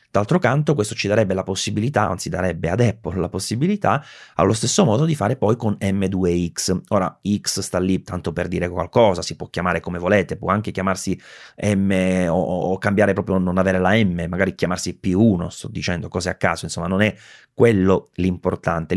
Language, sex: Italian, male